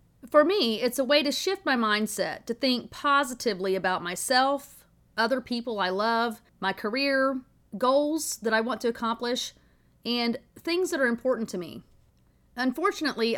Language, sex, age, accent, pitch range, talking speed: English, female, 40-59, American, 200-265 Hz, 155 wpm